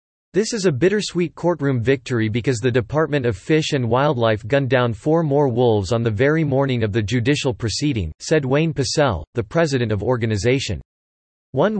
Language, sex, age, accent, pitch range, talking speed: English, male, 40-59, American, 115-150 Hz, 175 wpm